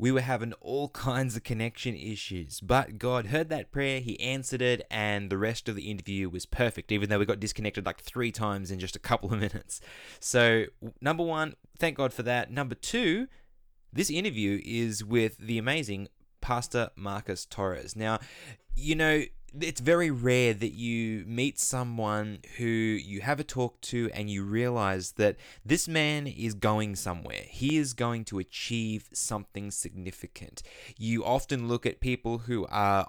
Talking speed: 170 wpm